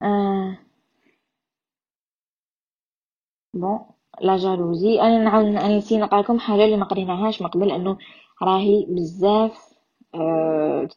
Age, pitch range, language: 20-39, 180-220 Hz, Arabic